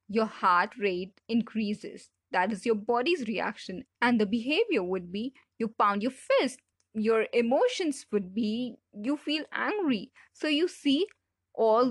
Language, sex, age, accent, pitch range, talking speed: English, female, 20-39, Indian, 195-245 Hz, 145 wpm